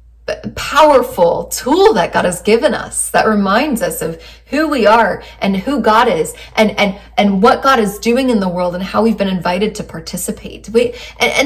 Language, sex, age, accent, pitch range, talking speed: English, female, 20-39, American, 180-230 Hz, 200 wpm